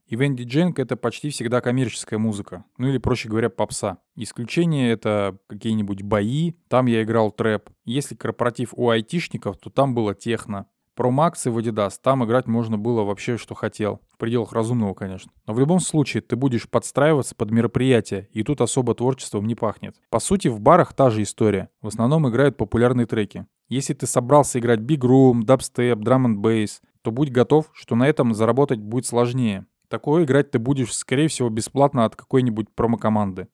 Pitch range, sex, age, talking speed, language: 110-135 Hz, male, 20-39, 185 wpm, Russian